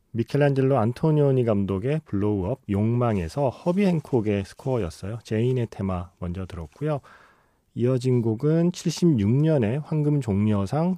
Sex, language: male, Korean